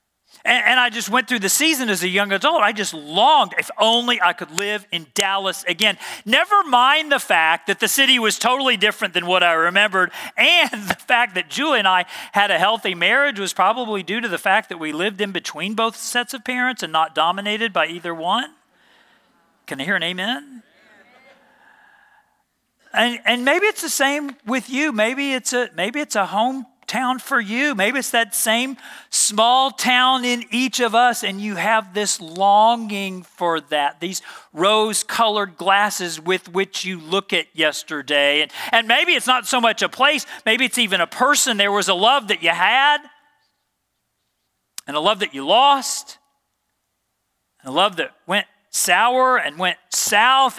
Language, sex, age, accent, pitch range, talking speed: English, male, 40-59, American, 200-270 Hz, 180 wpm